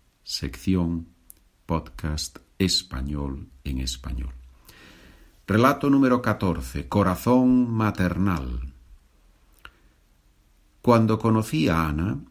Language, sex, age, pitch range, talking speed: Spanish, male, 50-69, 80-120 Hz, 70 wpm